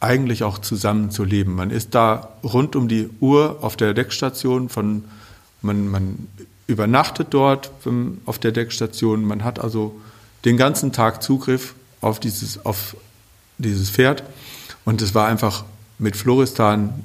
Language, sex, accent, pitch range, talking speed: German, male, German, 110-135 Hz, 145 wpm